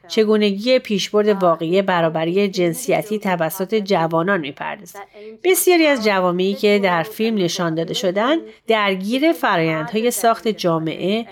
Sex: female